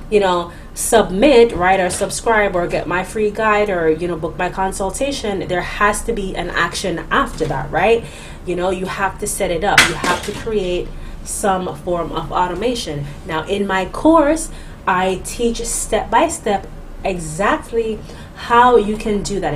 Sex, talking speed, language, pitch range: female, 170 wpm, English, 175-220 Hz